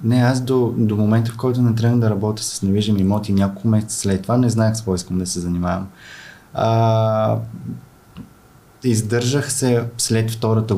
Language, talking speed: Bulgarian, 175 wpm